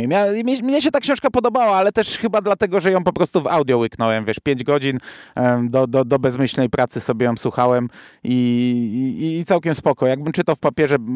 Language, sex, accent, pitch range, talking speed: Polish, male, native, 120-155 Hz, 195 wpm